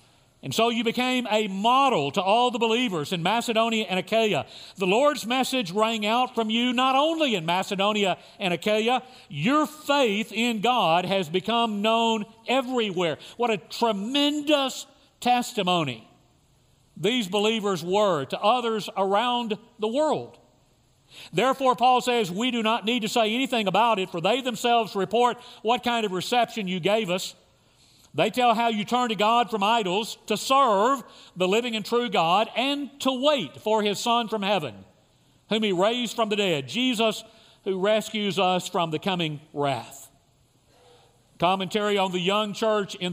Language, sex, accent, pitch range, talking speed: English, male, American, 180-240 Hz, 160 wpm